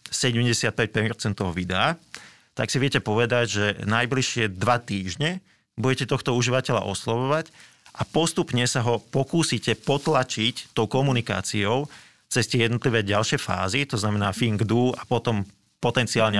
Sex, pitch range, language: male, 105-130 Hz, Slovak